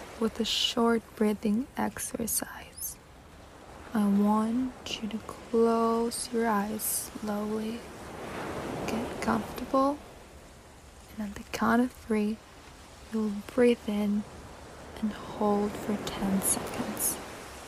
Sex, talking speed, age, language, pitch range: female, 100 wpm, 20-39, English, 205-230 Hz